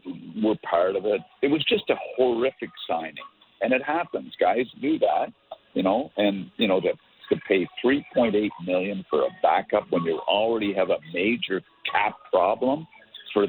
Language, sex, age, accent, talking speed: English, male, 50-69, American, 170 wpm